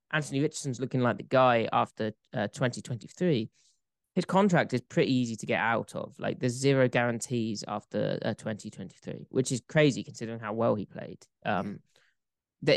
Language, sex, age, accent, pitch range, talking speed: English, male, 20-39, British, 115-140 Hz, 185 wpm